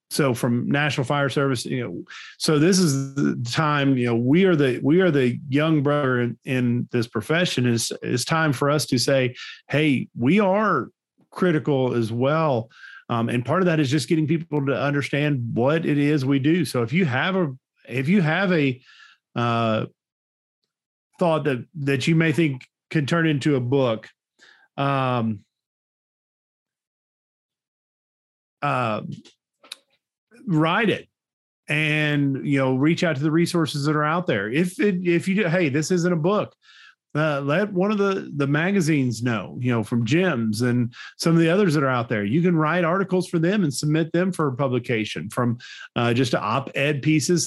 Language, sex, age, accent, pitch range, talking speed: English, male, 40-59, American, 125-165 Hz, 175 wpm